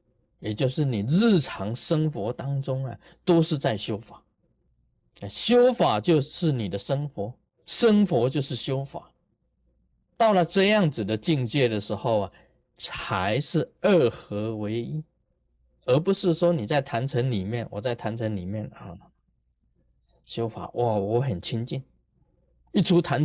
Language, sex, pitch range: Chinese, male, 105-165 Hz